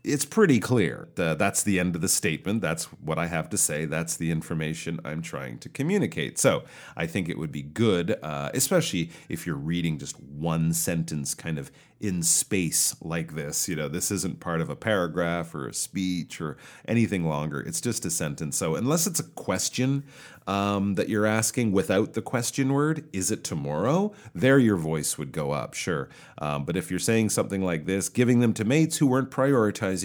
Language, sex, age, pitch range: Chinese, male, 40-59, 80-115 Hz